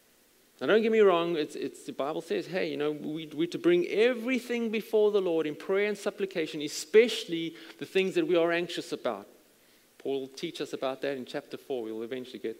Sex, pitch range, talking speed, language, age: male, 145-210 Hz, 215 wpm, English, 30-49